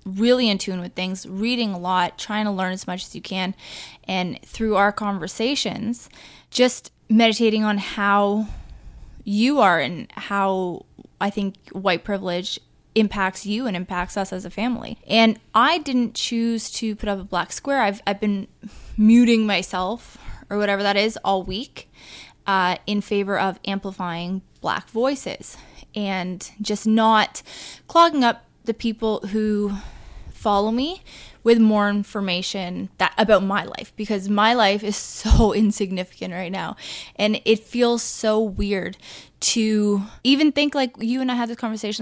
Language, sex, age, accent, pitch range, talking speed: English, female, 20-39, American, 195-230 Hz, 155 wpm